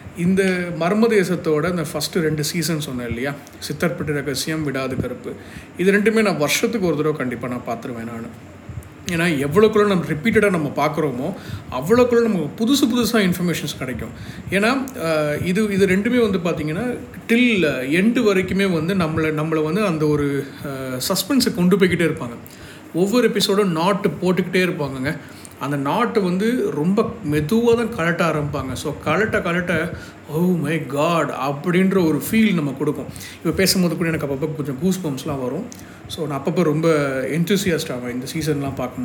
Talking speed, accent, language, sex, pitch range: 145 wpm, native, Tamil, male, 140-195 Hz